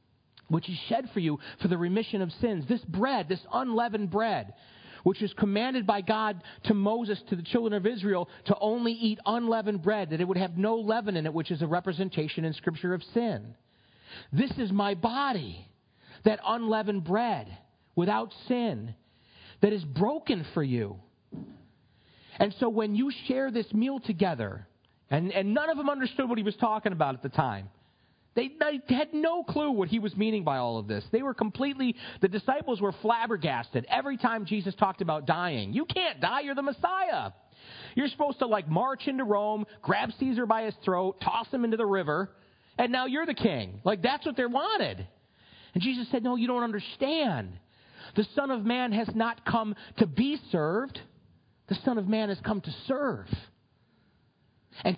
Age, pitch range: 40-59, 175-240 Hz